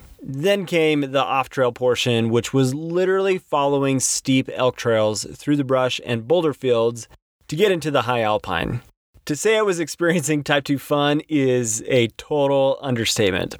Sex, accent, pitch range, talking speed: male, American, 120-150 Hz, 160 wpm